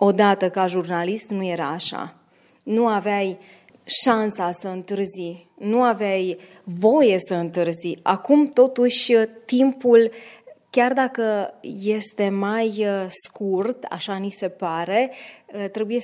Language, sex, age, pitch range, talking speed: Romanian, female, 20-39, 185-225 Hz, 110 wpm